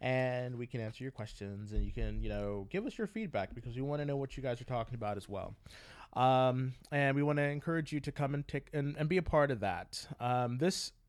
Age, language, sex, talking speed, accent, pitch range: 20-39, English, male, 260 wpm, American, 115-140 Hz